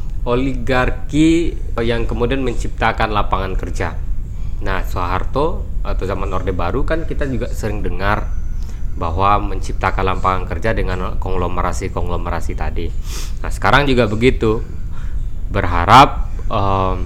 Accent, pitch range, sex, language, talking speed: native, 90-120 Hz, male, Indonesian, 110 wpm